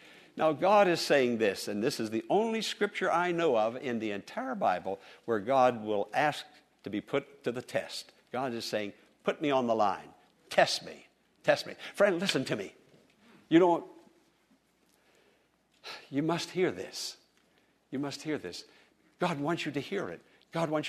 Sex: male